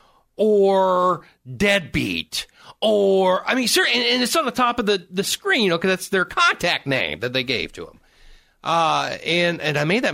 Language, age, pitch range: English, 40-59, 130-205 Hz